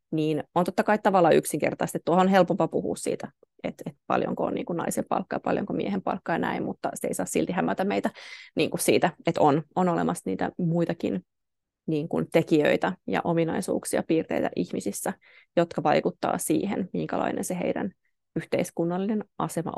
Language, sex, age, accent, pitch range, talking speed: Finnish, female, 20-39, native, 155-180 Hz, 145 wpm